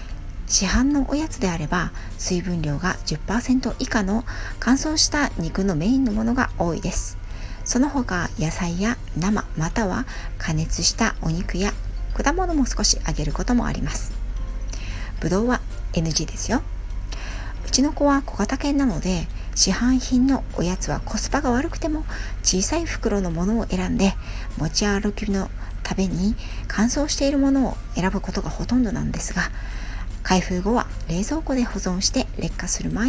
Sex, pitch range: female, 150-250 Hz